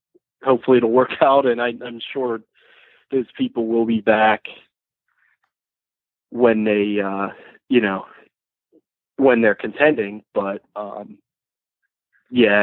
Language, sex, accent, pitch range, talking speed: English, male, American, 105-130 Hz, 115 wpm